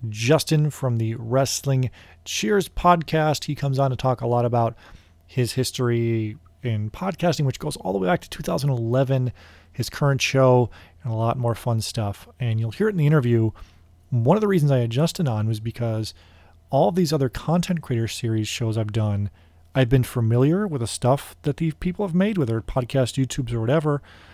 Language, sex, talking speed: English, male, 195 wpm